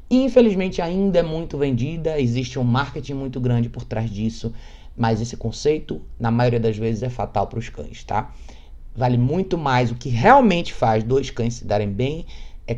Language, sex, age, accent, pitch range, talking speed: Portuguese, male, 20-39, Brazilian, 115-150 Hz, 185 wpm